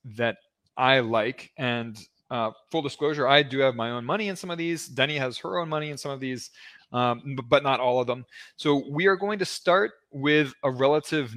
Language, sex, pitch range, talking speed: English, male, 120-155 Hz, 215 wpm